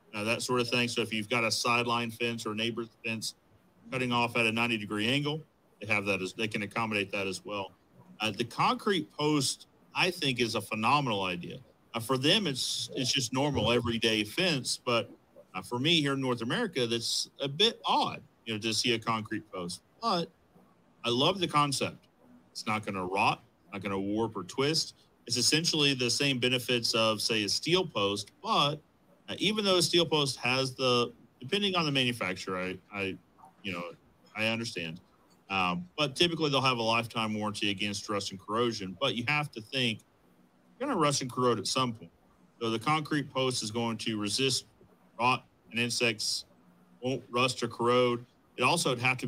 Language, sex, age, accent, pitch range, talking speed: English, male, 40-59, American, 110-130 Hz, 195 wpm